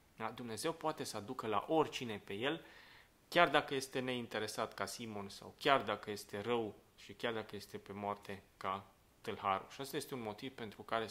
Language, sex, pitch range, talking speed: Romanian, male, 100-125 Hz, 185 wpm